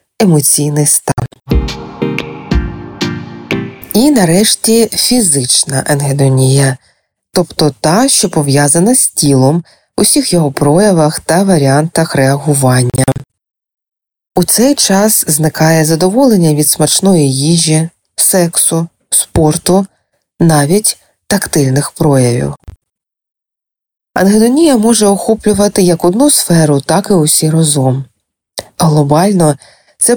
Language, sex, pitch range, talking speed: Ukrainian, female, 145-195 Hz, 90 wpm